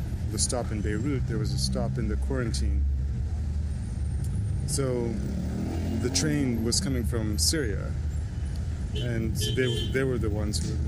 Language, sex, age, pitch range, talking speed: English, male, 30-49, 80-115 Hz, 150 wpm